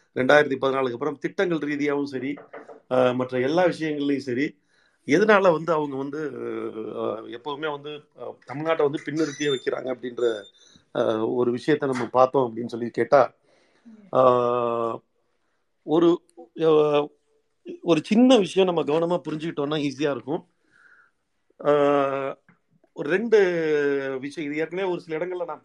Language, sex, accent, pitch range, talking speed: Tamil, male, native, 135-165 Hz, 115 wpm